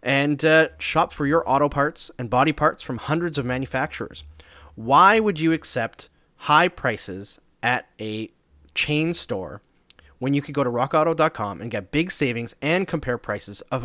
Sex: male